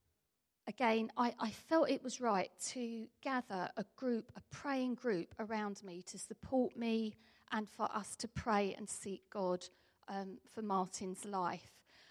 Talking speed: 155 wpm